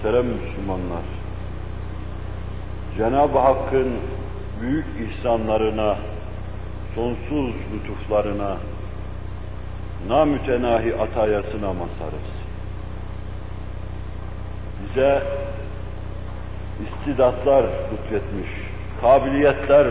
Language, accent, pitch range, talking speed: Turkish, native, 95-120 Hz, 45 wpm